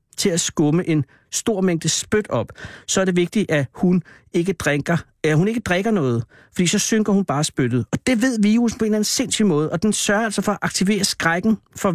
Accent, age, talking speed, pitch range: native, 60-79, 230 wpm, 155-195 Hz